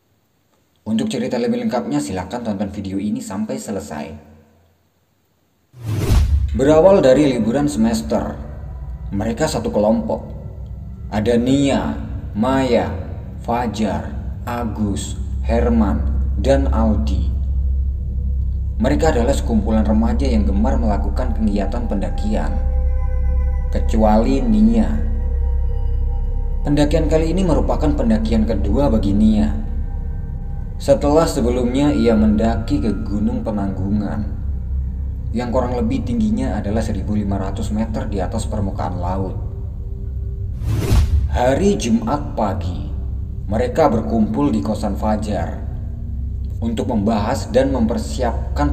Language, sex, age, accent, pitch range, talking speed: Indonesian, male, 30-49, native, 75-110 Hz, 90 wpm